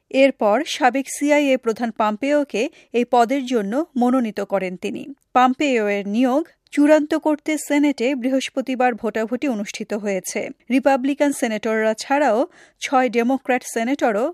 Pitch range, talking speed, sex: 225-285 Hz, 110 wpm, female